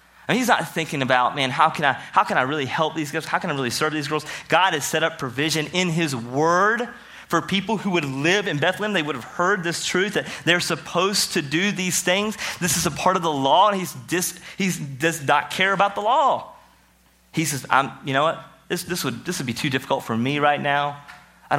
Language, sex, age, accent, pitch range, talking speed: English, male, 30-49, American, 120-165 Hz, 235 wpm